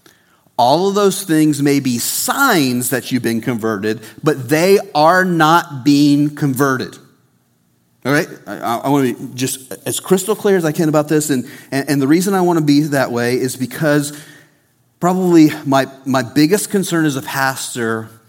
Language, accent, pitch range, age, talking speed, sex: English, American, 135-190 Hz, 40-59, 175 wpm, male